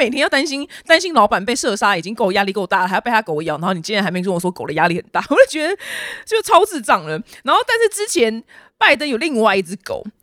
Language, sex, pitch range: Chinese, female, 185-300 Hz